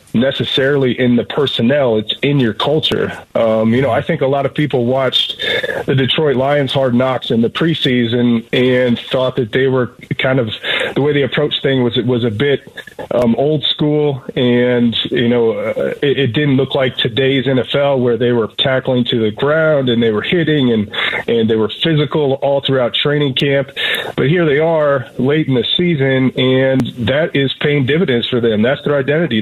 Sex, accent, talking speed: male, American, 195 wpm